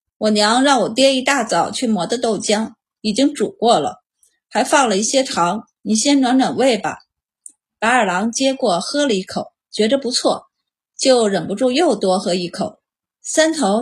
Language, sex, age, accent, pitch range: Chinese, female, 30-49, native, 210-275 Hz